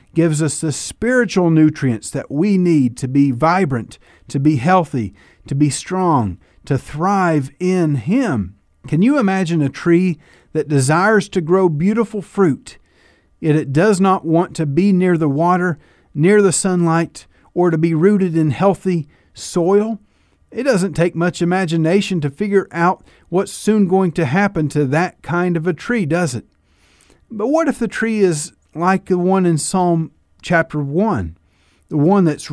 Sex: male